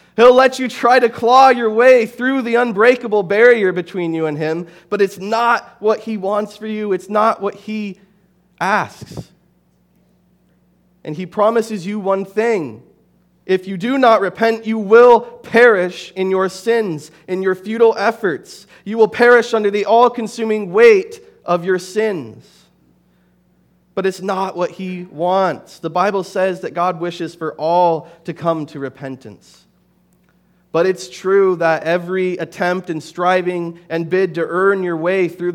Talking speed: 155 wpm